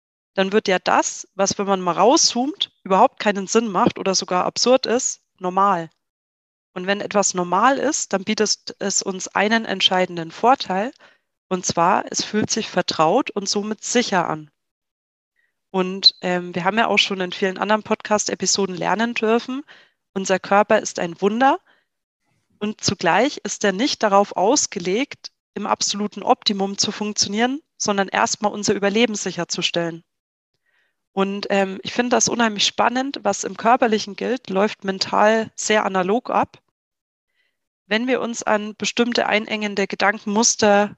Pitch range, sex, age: 190-230 Hz, female, 30-49